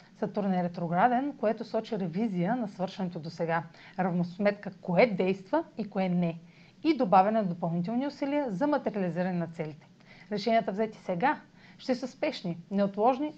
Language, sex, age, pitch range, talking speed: Bulgarian, female, 40-59, 175-225 Hz, 145 wpm